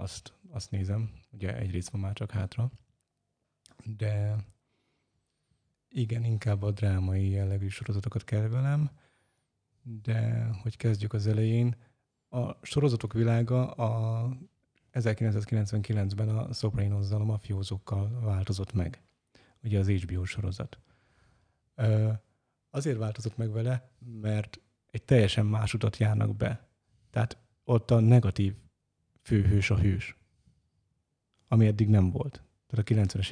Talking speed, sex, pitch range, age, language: 115 wpm, male, 100-120 Hz, 30-49, Hungarian